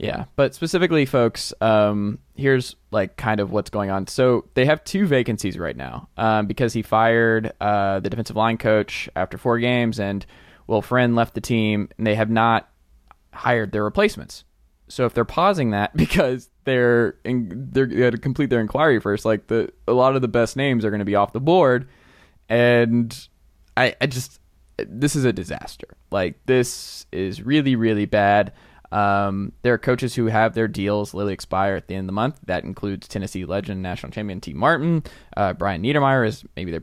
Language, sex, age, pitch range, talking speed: English, male, 20-39, 100-125 Hz, 195 wpm